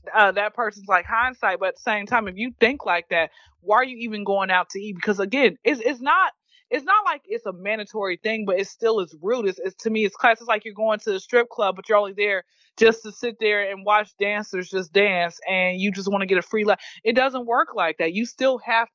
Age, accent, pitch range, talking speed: 20-39, American, 185-235 Hz, 270 wpm